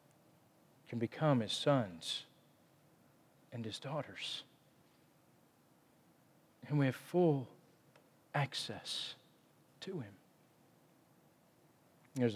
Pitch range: 130-165 Hz